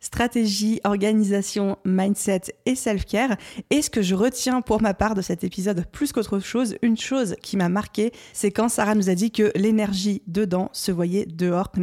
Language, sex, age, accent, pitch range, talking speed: French, female, 20-39, French, 190-225 Hz, 190 wpm